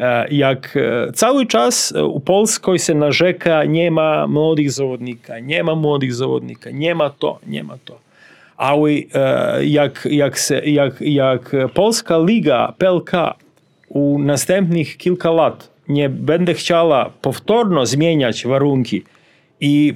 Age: 40-59